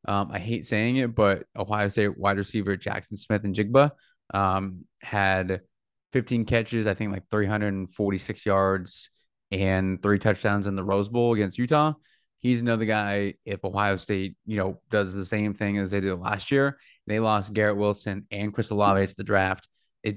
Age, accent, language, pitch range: 20-39, American, English, 100-115 Hz